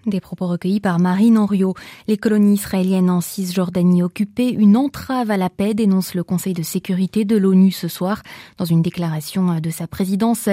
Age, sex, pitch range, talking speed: 20-39, female, 180-220 Hz, 180 wpm